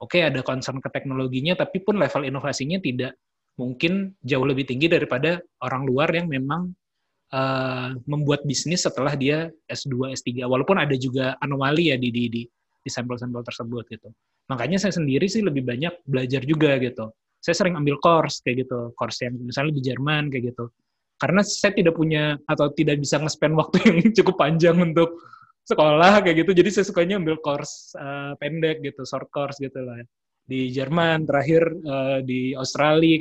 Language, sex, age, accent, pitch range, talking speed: Indonesian, male, 20-39, native, 130-160 Hz, 170 wpm